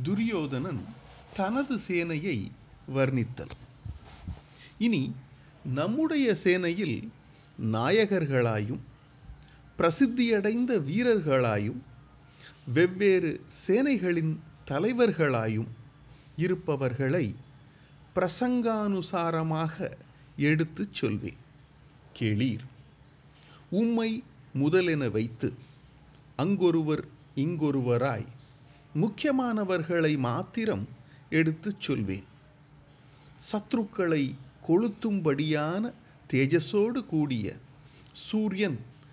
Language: Tamil